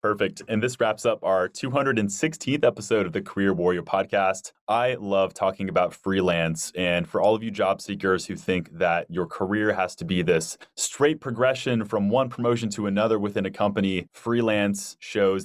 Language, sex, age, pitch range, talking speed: English, male, 20-39, 90-105 Hz, 180 wpm